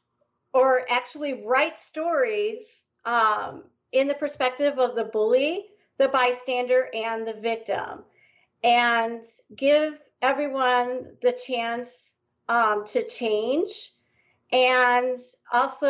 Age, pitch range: 40-59, 220-255 Hz